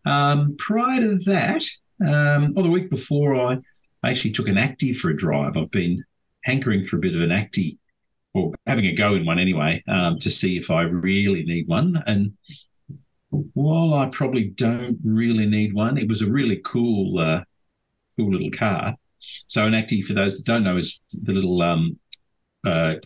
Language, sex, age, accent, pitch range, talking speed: English, male, 50-69, Australian, 85-120 Hz, 185 wpm